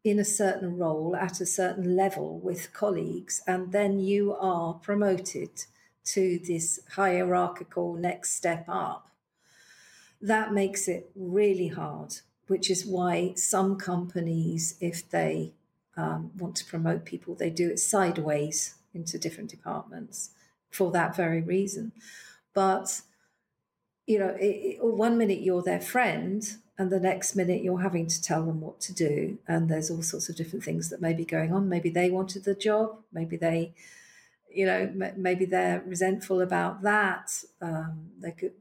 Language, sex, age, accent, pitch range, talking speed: English, female, 50-69, British, 175-200 Hz, 150 wpm